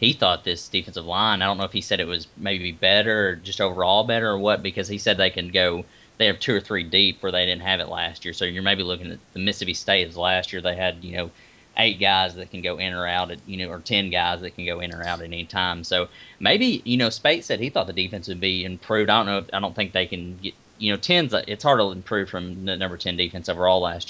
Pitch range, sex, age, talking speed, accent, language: 90-100 Hz, male, 30-49, 285 wpm, American, English